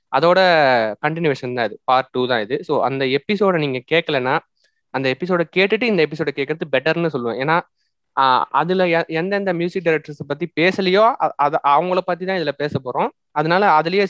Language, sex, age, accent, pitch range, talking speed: Tamil, male, 20-39, native, 135-180 Hz, 160 wpm